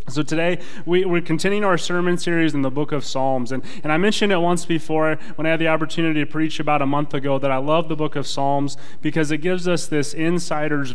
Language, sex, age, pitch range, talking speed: English, male, 20-39, 135-160 Hz, 235 wpm